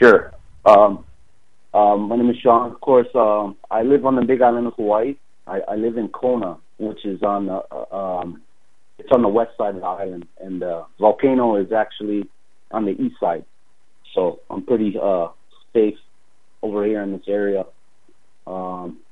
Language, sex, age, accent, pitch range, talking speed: English, male, 30-49, American, 95-115 Hz, 180 wpm